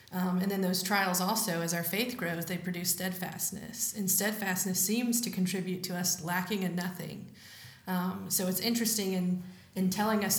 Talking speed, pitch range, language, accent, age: 180 wpm, 180-200 Hz, English, American, 20-39